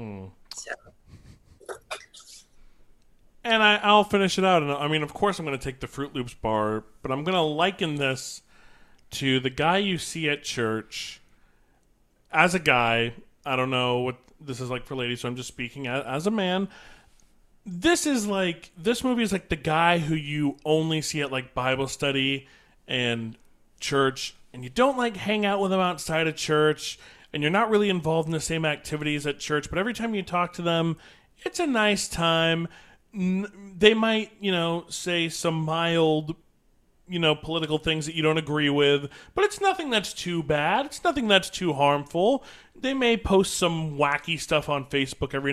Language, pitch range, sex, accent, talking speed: English, 140-205 Hz, male, American, 185 wpm